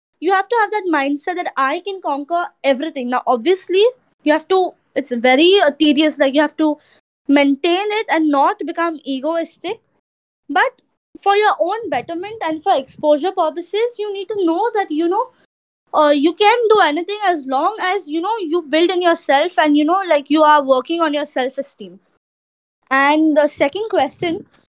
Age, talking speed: 20-39, 180 wpm